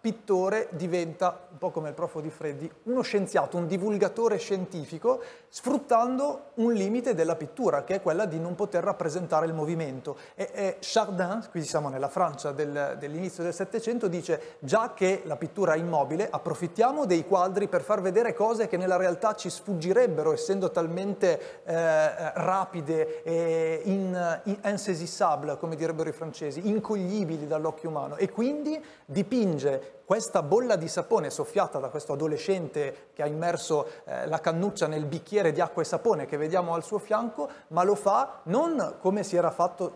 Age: 30-49